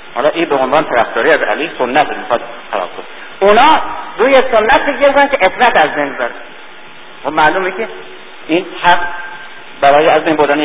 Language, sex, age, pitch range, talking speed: Persian, male, 50-69, 145-230 Hz, 135 wpm